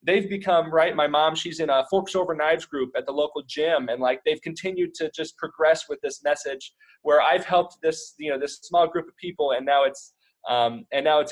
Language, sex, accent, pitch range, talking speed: English, male, American, 140-190 Hz, 235 wpm